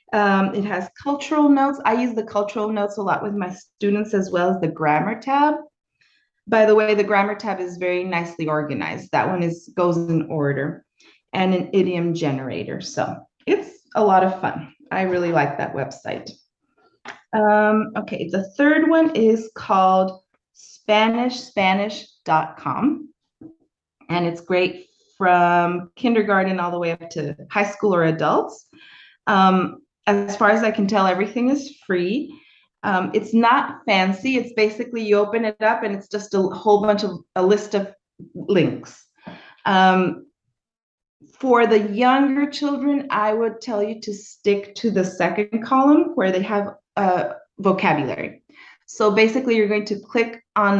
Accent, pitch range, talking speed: American, 185-240 Hz, 155 wpm